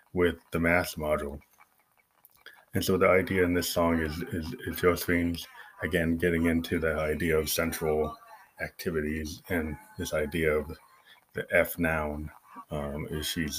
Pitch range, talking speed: 80-95 Hz, 140 wpm